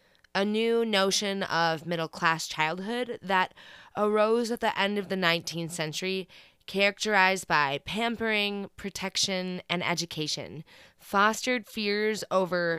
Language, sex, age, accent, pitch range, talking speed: English, female, 20-39, American, 165-210 Hz, 115 wpm